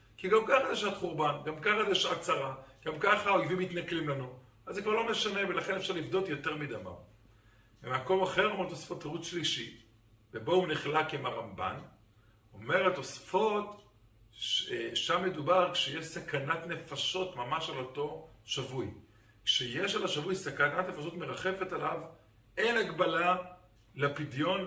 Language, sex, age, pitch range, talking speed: Hebrew, male, 50-69, 130-185 Hz, 140 wpm